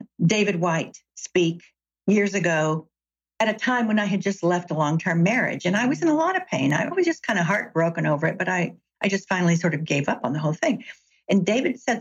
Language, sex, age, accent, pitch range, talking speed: English, female, 60-79, American, 170-225 Hz, 240 wpm